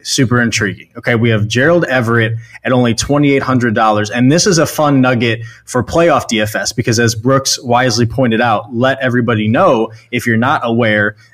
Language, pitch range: English, 115-135 Hz